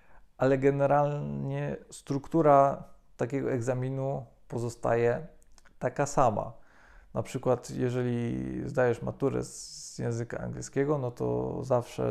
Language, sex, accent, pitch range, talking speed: Polish, male, native, 110-140 Hz, 95 wpm